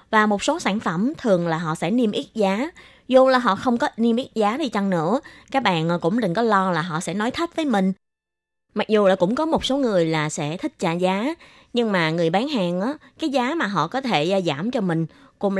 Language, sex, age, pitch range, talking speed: Vietnamese, female, 20-39, 170-245 Hz, 250 wpm